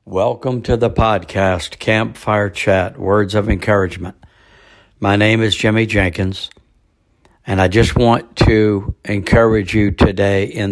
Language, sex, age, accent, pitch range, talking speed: English, male, 60-79, American, 95-110 Hz, 130 wpm